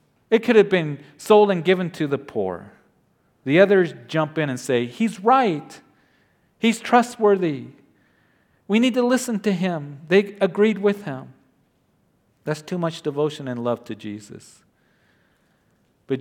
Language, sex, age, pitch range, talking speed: English, male, 50-69, 120-165 Hz, 145 wpm